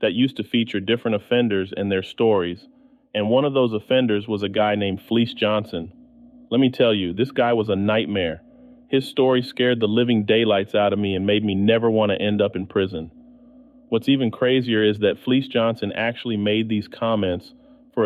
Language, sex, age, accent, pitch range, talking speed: English, male, 30-49, American, 105-130 Hz, 200 wpm